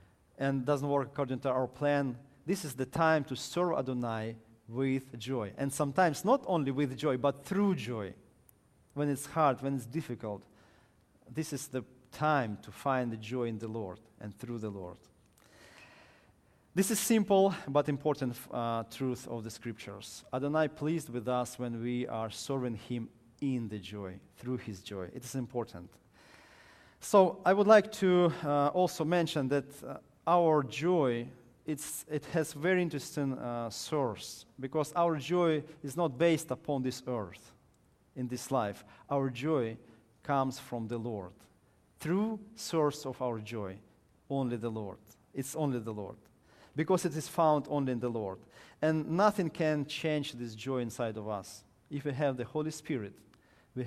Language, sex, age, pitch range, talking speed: English, male, 40-59, 115-155 Hz, 165 wpm